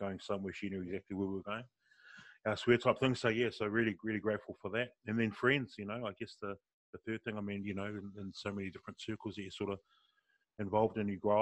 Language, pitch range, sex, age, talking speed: English, 95-105 Hz, male, 20-39, 275 wpm